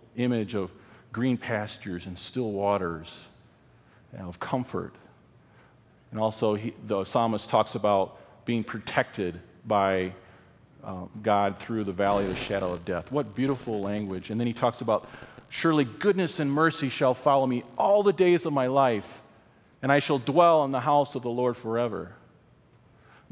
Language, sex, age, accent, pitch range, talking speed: English, male, 40-59, American, 110-150 Hz, 165 wpm